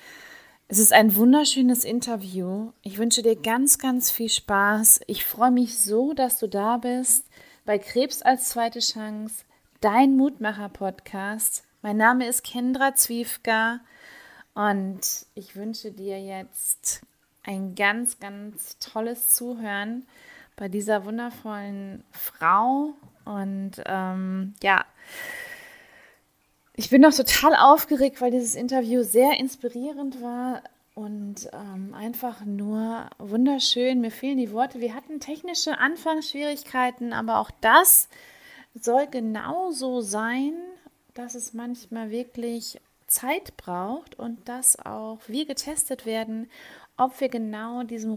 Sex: female